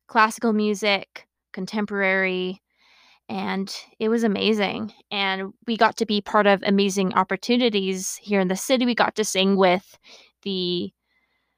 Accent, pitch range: American, 180-220 Hz